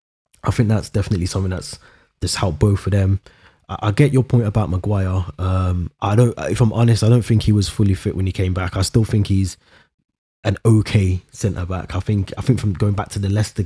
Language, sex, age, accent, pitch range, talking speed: English, male, 20-39, British, 90-105 Hz, 235 wpm